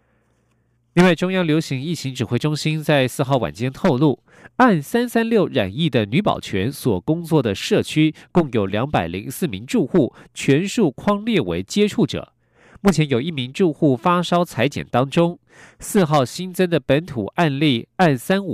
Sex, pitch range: male, 130-180 Hz